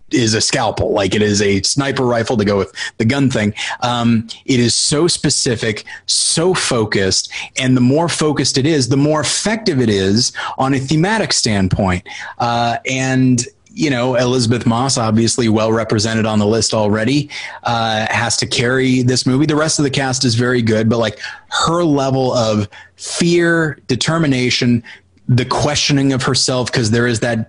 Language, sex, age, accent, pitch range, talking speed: English, male, 30-49, American, 115-135 Hz, 170 wpm